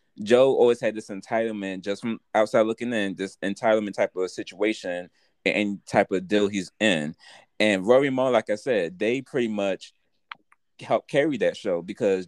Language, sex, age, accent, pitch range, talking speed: English, male, 20-39, American, 95-115 Hz, 170 wpm